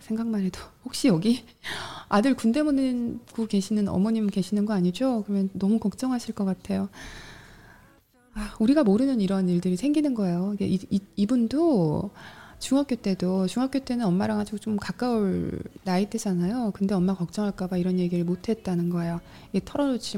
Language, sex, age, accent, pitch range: Korean, female, 20-39, native, 180-230 Hz